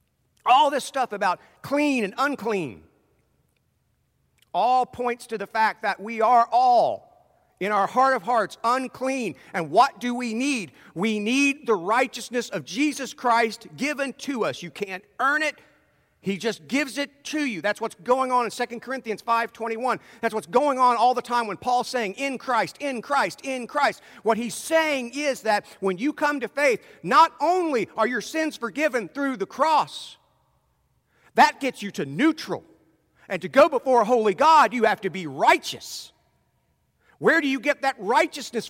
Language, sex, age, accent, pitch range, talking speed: English, male, 50-69, American, 220-290 Hz, 175 wpm